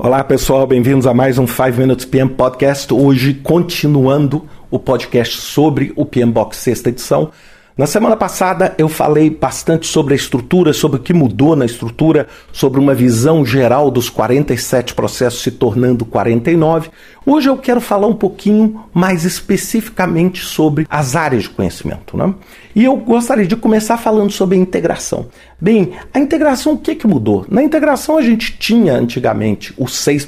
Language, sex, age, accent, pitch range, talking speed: Portuguese, male, 50-69, Brazilian, 130-205 Hz, 165 wpm